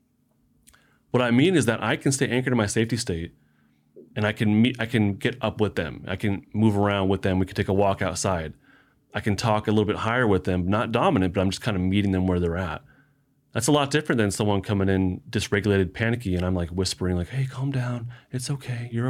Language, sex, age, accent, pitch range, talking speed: English, male, 30-49, American, 95-120 Hz, 240 wpm